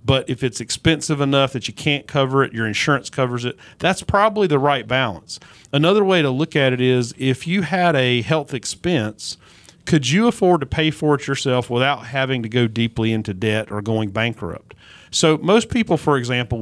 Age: 40-59